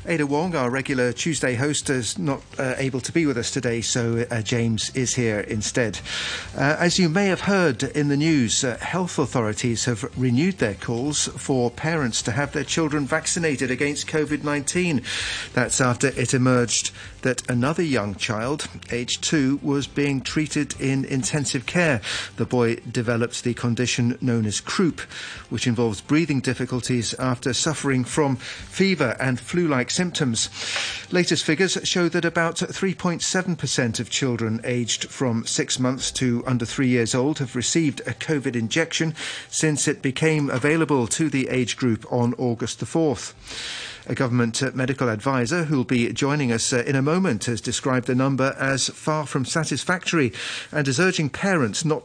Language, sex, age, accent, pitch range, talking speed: English, male, 40-59, British, 120-150 Hz, 165 wpm